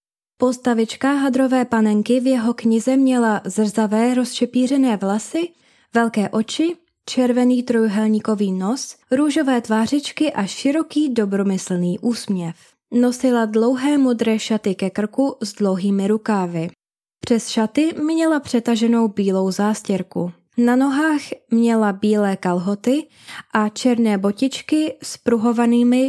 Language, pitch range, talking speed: Czech, 205-260 Hz, 105 wpm